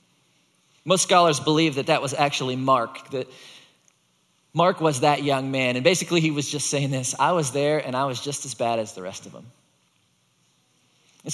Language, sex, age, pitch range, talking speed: English, male, 40-59, 130-170 Hz, 190 wpm